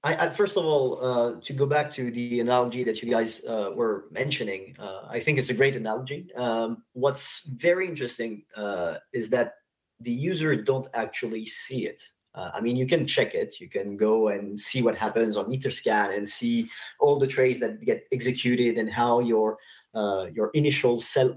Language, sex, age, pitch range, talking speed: English, male, 30-49, 110-135 Hz, 195 wpm